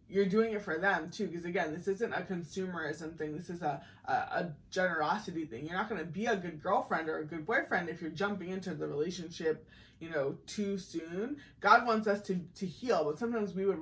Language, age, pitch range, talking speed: English, 20-39, 160-210 Hz, 220 wpm